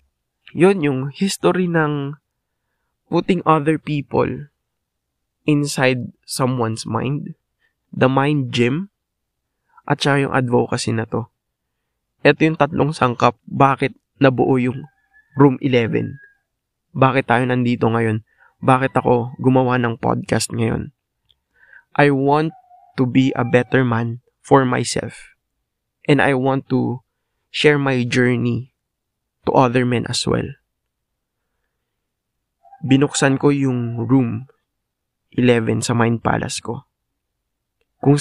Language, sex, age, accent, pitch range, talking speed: English, male, 20-39, Filipino, 120-145 Hz, 110 wpm